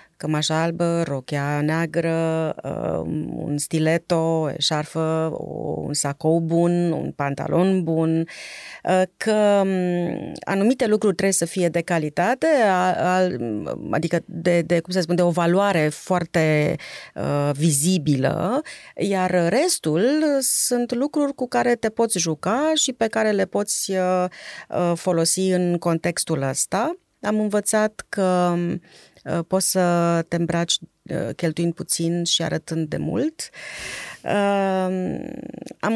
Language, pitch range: Romanian, 165-205 Hz